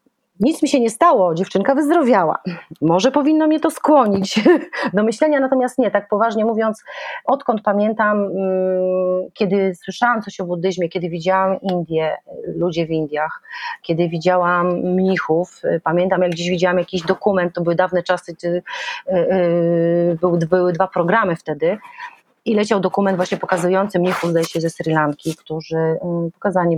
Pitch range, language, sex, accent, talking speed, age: 170-245 Hz, Polish, female, native, 140 wpm, 30-49